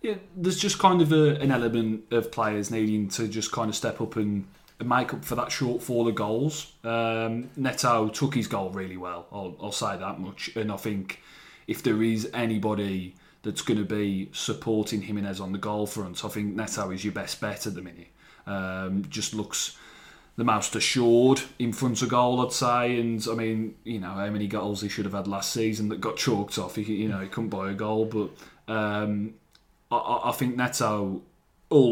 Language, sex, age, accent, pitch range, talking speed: English, male, 30-49, British, 100-120 Hz, 205 wpm